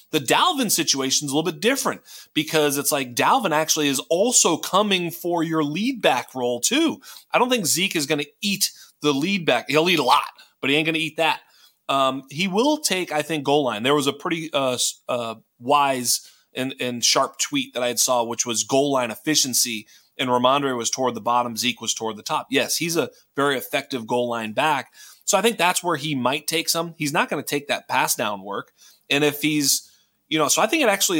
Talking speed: 230 wpm